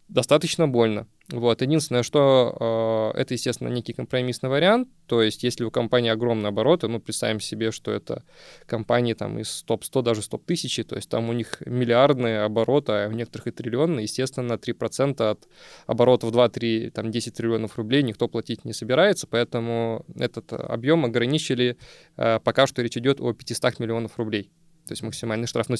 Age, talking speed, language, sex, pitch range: 20-39, 165 wpm, Russian, male, 115-135 Hz